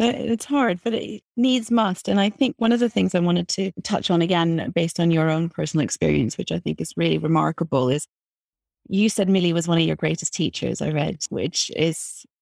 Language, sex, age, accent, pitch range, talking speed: English, female, 30-49, British, 160-195 Hz, 215 wpm